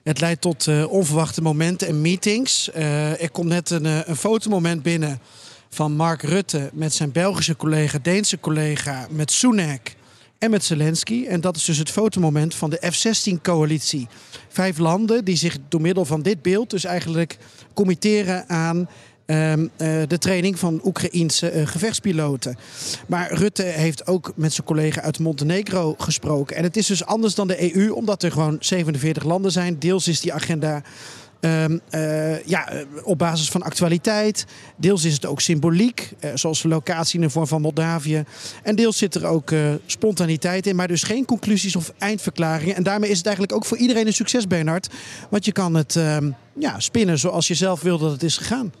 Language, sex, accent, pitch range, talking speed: Dutch, male, Dutch, 155-190 Hz, 175 wpm